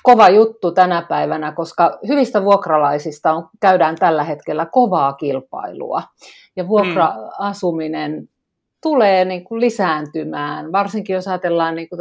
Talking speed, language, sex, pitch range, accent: 95 wpm, Finnish, female, 155-195 Hz, native